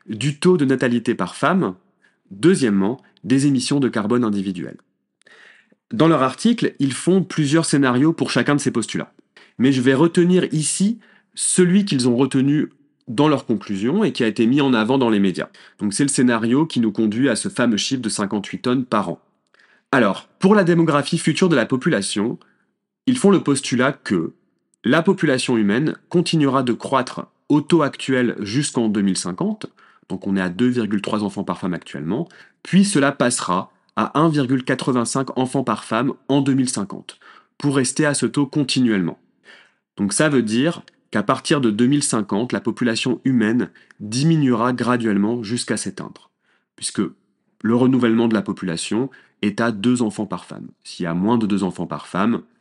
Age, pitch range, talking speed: 30-49, 110-150 Hz, 170 wpm